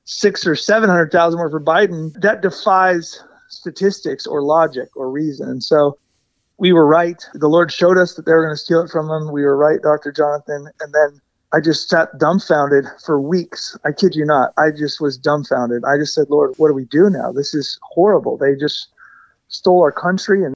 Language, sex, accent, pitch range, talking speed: English, male, American, 150-180 Hz, 210 wpm